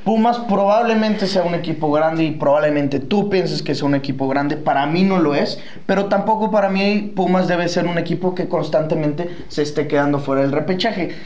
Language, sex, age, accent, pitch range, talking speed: English, male, 20-39, Mexican, 145-190 Hz, 195 wpm